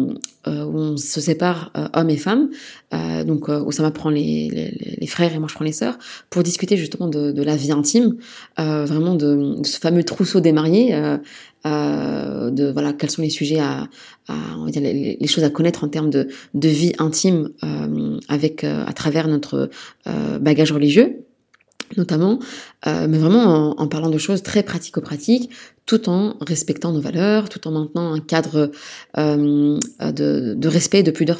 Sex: female